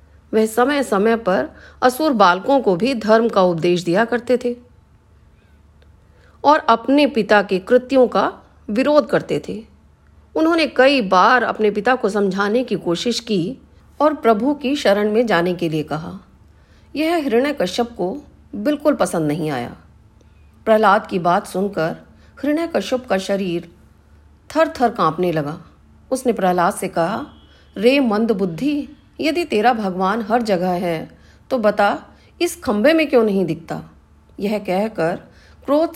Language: Hindi